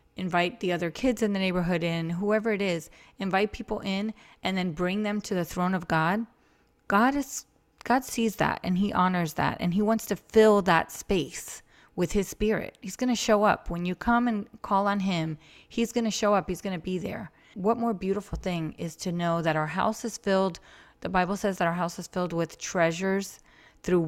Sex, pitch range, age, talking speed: female, 165-205 Hz, 30-49, 215 wpm